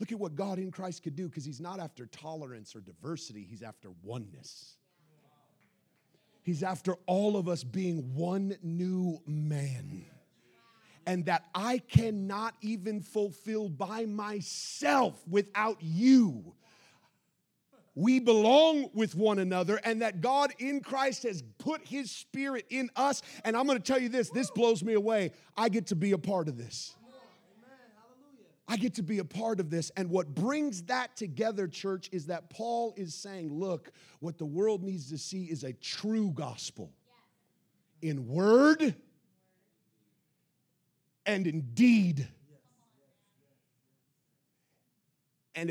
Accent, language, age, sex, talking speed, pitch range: American, English, 40-59, male, 140 wpm, 145-215 Hz